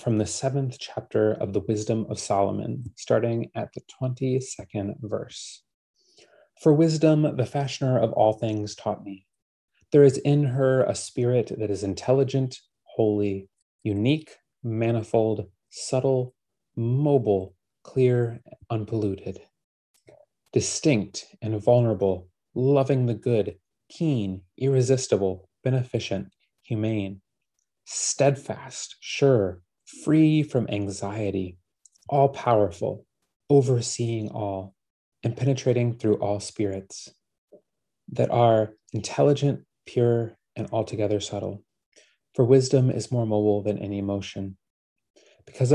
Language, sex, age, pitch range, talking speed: English, male, 30-49, 100-130 Hz, 100 wpm